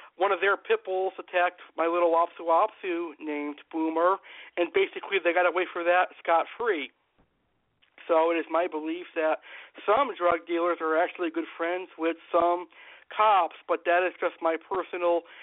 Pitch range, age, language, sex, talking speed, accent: 160-190 Hz, 50-69, English, male, 160 wpm, American